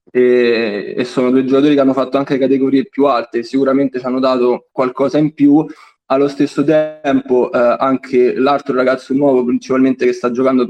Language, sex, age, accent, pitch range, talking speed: Italian, male, 20-39, native, 125-140 Hz, 170 wpm